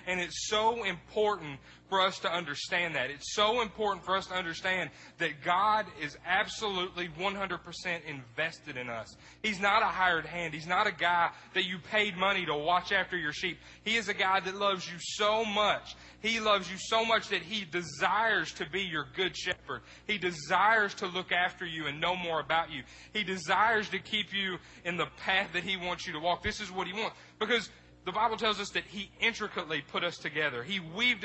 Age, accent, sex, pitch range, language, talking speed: 30-49, American, male, 170-210 Hz, English, 205 wpm